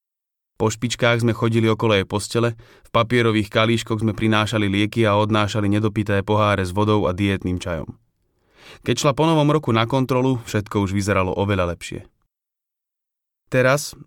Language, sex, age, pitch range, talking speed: Slovak, male, 30-49, 100-120 Hz, 150 wpm